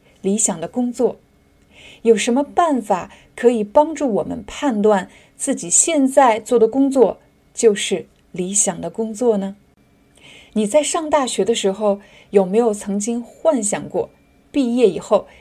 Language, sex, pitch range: Chinese, female, 200-260 Hz